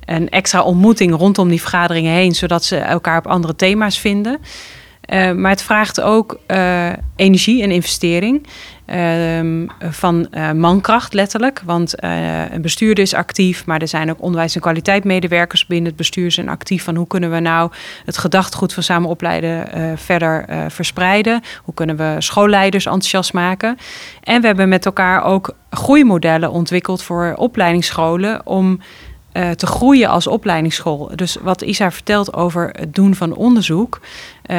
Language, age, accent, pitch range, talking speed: Dutch, 30-49, Dutch, 165-195 Hz, 155 wpm